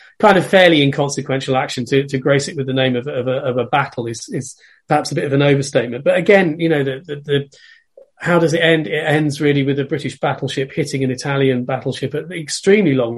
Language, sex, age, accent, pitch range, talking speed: English, male, 30-49, British, 125-155 Hz, 240 wpm